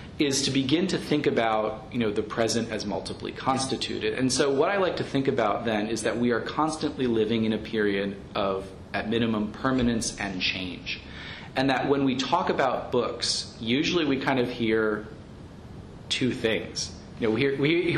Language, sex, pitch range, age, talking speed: English, male, 105-130 Hz, 30-49, 175 wpm